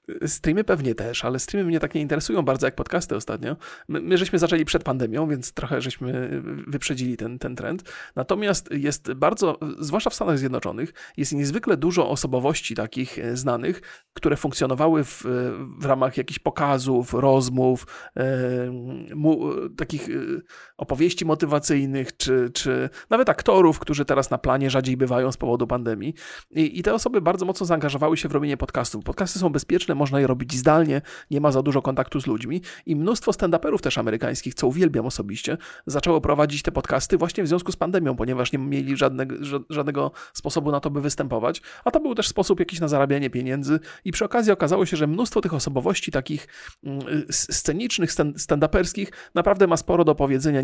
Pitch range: 130-170 Hz